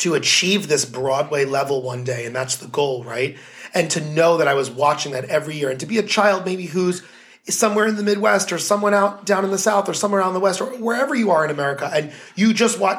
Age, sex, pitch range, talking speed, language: 30-49, male, 170-215 Hz, 260 wpm, English